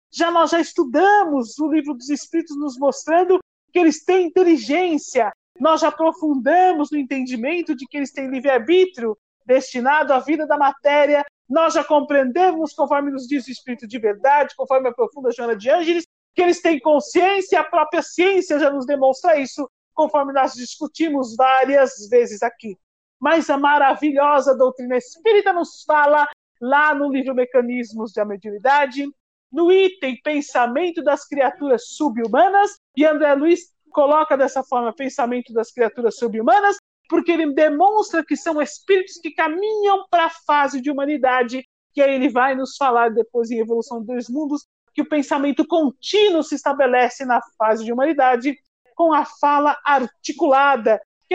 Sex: male